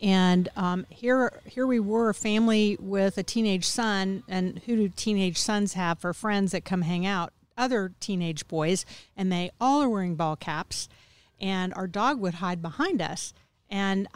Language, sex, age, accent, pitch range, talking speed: English, female, 50-69, American, 180-225 Hz, 180 wpm